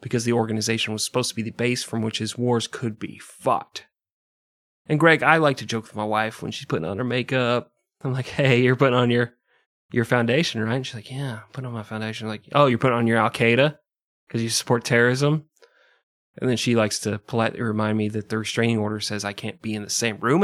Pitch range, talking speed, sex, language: 115-150 Hz, 240 wpm, male, English